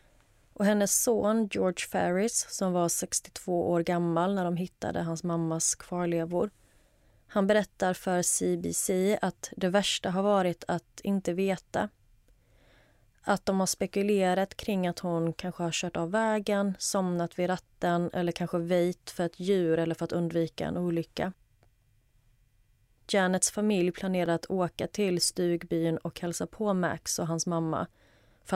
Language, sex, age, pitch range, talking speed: Swedish, female, 30-49, 160-185 Hz, 145 wpm